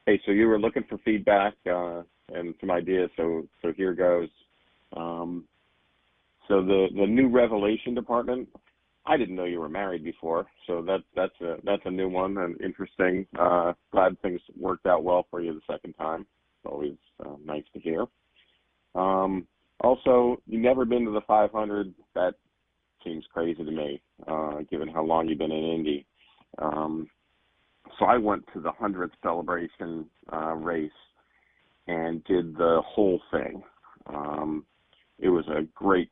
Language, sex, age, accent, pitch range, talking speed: English, male, 40-59, American, 80-95 Hz, 160 wpm